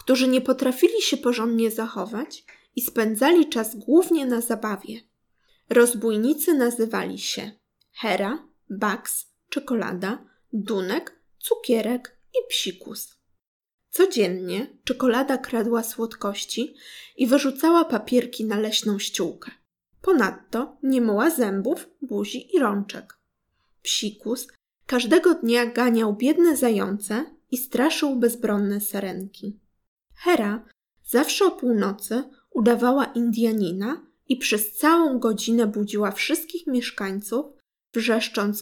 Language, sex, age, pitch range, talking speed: Polish, female, 20-39, 215-290 Hz, 100 wpm